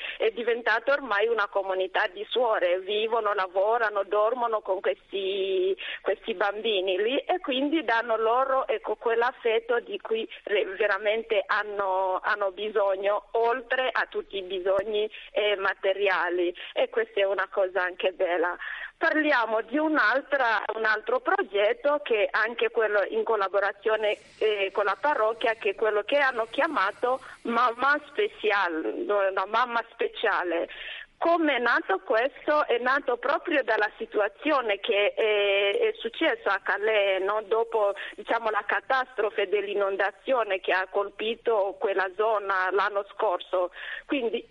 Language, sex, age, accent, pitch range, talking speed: Italian, female, 40-59, native, 205-290 Hz, 125 wpm